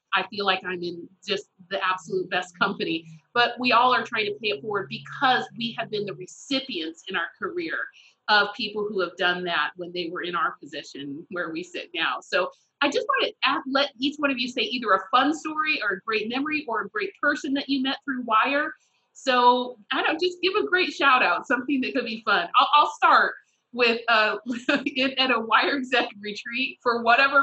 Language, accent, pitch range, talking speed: English, American, 205-275 Hz, 215 wpm